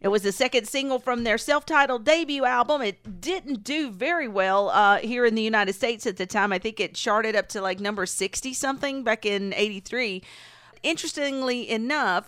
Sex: female